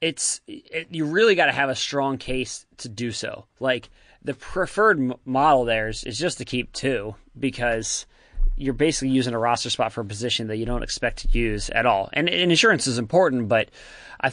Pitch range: 120-140 Hz